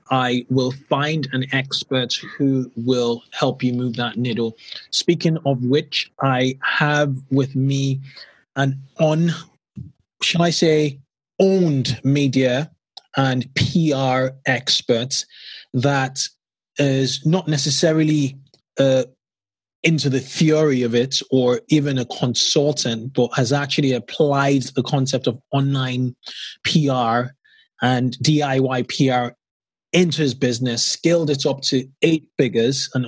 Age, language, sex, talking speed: 20-39, English, male, 120 wpm